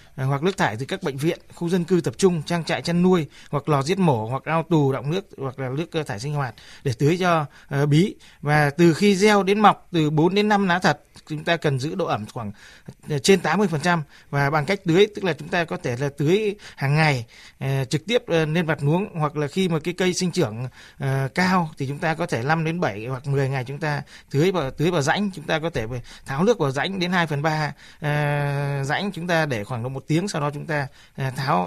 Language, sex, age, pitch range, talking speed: Vietnamese, male, 20-39, 140-175 Hz, 245 wpm